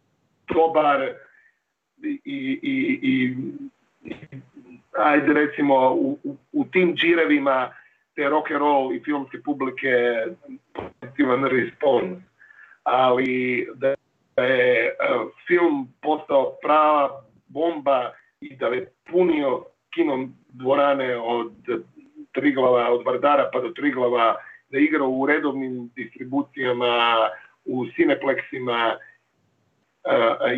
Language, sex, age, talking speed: Croatian, male, 50-69, 100 wpm